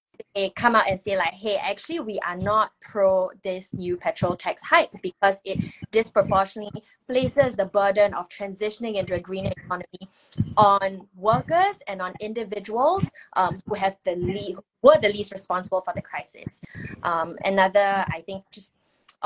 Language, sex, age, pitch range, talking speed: English, female, 20-39, 185-215 Hz, 160 wpm